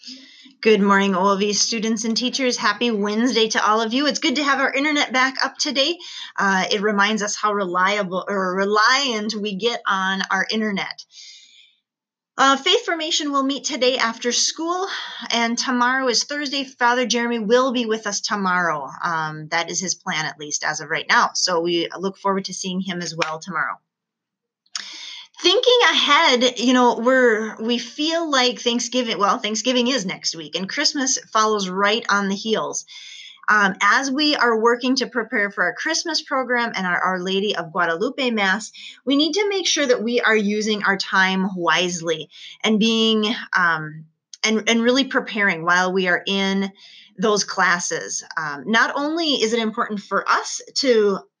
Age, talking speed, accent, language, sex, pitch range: 30-49, 170 wpm, American, English, female, 195-255 Hz